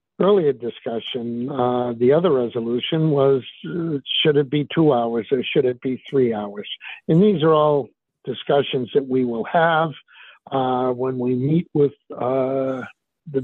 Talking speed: 155 wpm